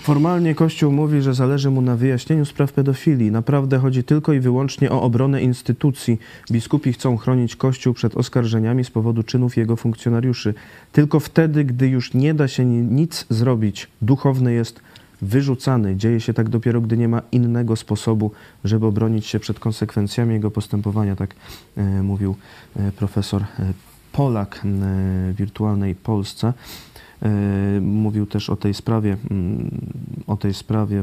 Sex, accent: male, native